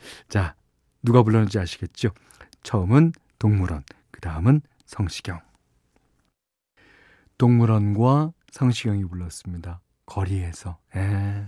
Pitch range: 105-135 Hz